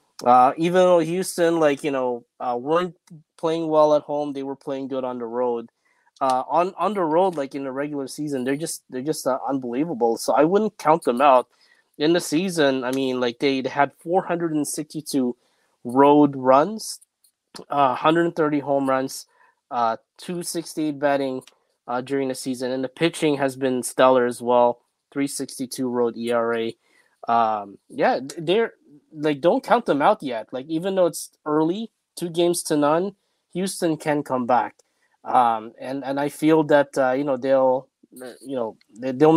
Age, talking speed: 20-39, 170 wpm